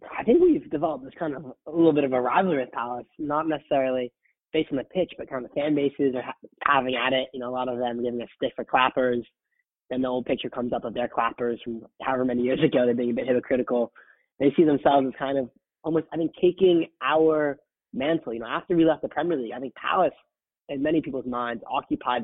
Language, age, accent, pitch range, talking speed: English, 20-39, American, 125-160 Hz, 245 wpm